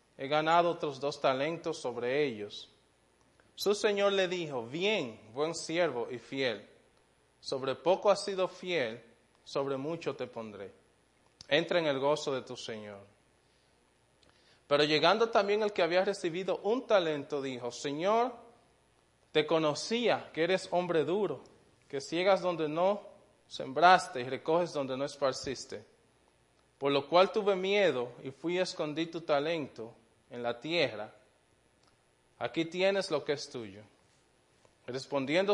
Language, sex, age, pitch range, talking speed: English, male, 20-39, 125-180 Hz, 135 wpm